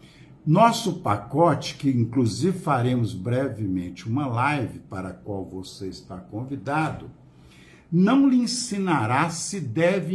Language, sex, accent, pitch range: Portuguese, male, Brazilian, 120-170 Hz